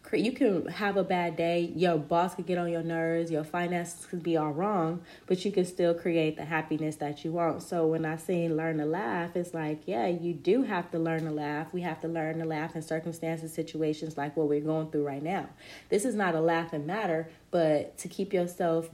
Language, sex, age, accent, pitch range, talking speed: English, female, 20-39, American, 155-180 Hz, 230 wpm